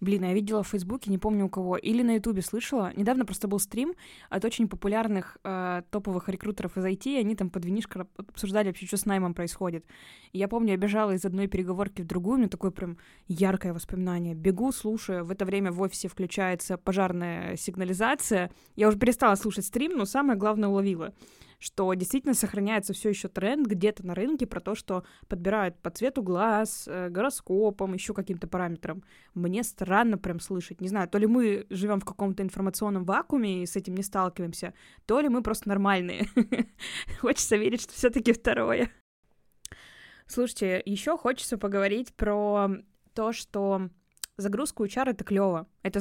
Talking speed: 170 wpm